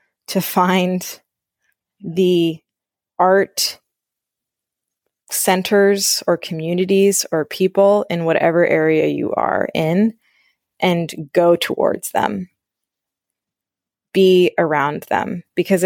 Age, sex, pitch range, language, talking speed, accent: 20-39, female, 165-205 Hz, English, 85 wpm, American